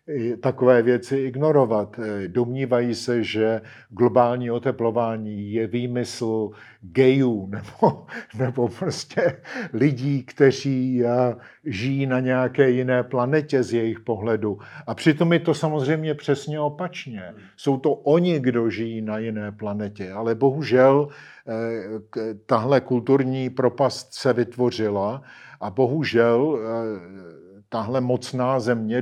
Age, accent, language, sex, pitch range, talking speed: 50-69, native, Czech, male, 115-135 Hz, 110 wpm